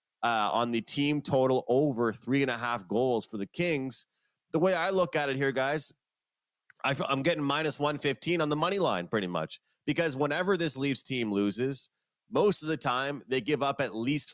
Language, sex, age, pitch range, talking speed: English, male, 30-49, 115-150 Hz, 195 wpm